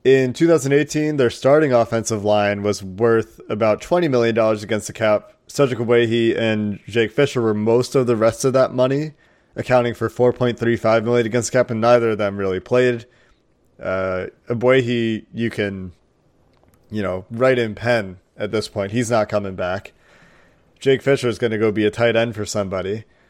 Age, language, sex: 30-49, English, male